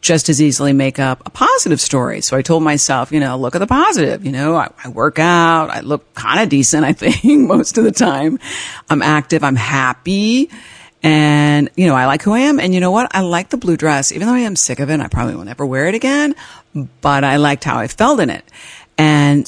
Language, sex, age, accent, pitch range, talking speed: English, female, 50-69, American, 145-185 Hz, 245 wpm